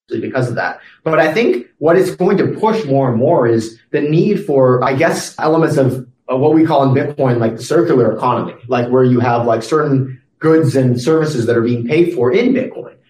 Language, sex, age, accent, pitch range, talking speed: English, male, 30-49, American, 120-145 Hz, 220 wpm